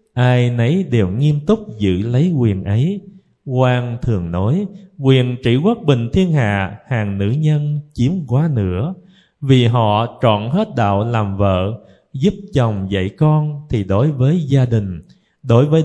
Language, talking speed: Vietnamese, 165 wpm